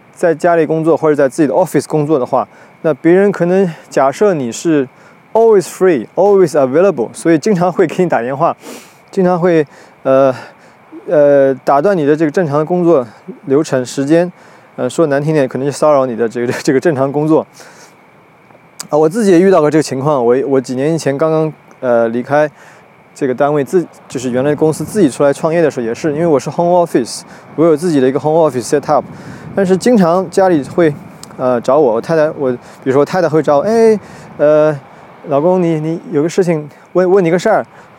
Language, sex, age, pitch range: Chinese, male, 20-39, 140-180 Hz